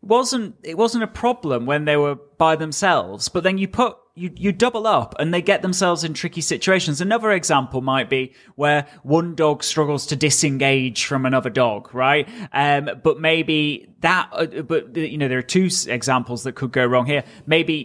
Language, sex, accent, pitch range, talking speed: English, male, British, 140-180 Hz, 190 wpm